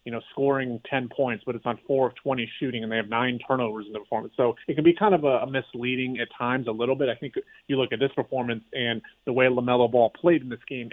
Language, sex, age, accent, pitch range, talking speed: English, male, 30-49, American, 120-135 Hz, 270 wpm